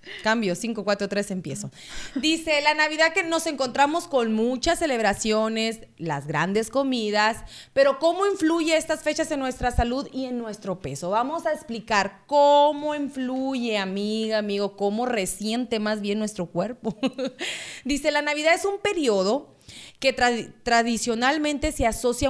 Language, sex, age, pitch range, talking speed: Spanish, female, 30-49, 205-275 Hz, 140 wpm